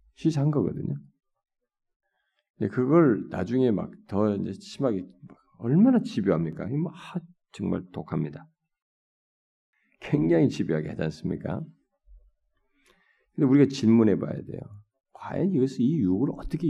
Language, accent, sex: Korean, native, male